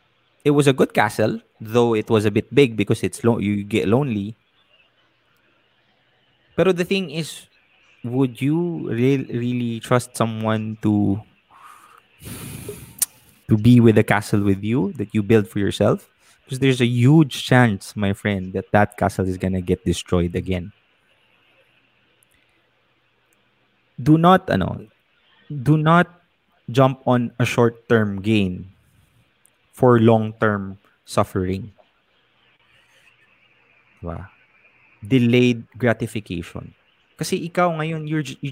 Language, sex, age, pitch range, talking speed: English, male, 20-39, 100-130 Hz, 115 wpm